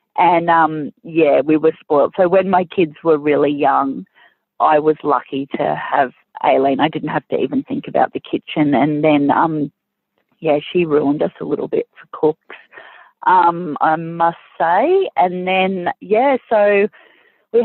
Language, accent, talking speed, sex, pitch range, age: English, Australian, 165 wpm, female, 150-195 Hz, 30-49